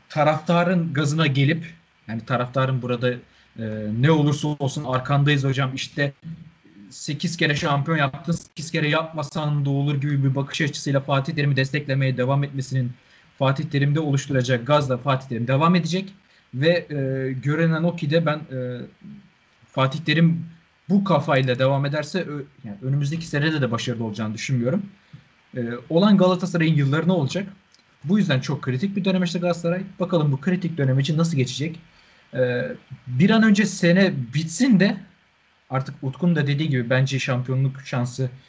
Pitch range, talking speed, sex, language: 130-170 Hz, 150 wpm, male, Turkish